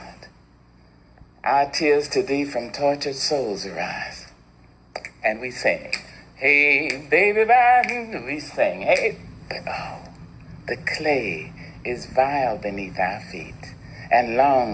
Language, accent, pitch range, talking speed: English, American, 130-185 Hz, 110 wpm